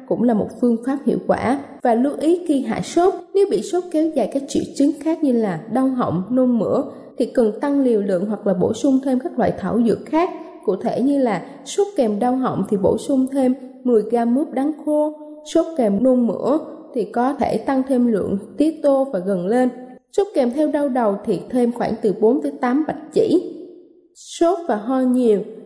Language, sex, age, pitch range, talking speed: Vietnamese, female, 20-39, 230-295 Hz, 215 wpm